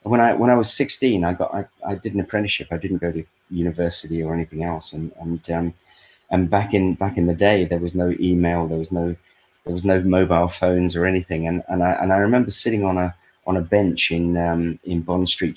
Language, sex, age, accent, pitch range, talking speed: English, male, 30-49, British, 85-95 Hz, 240 wpm